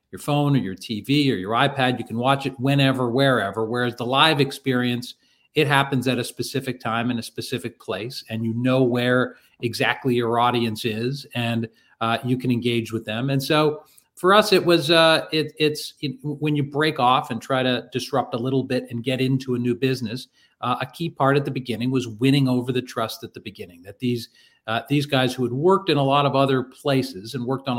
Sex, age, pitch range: male, 40-59, 115-140 Hz